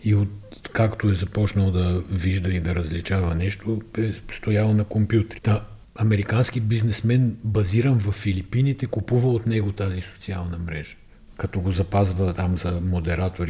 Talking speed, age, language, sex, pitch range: 145 wpm, 50-69, Bulgarian, male, 95-110 Hz